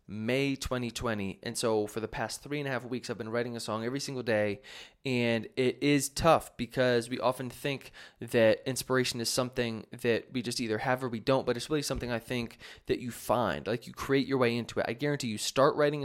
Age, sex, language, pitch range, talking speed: 20-39, male, English, 120-145 Hz, 235 wpm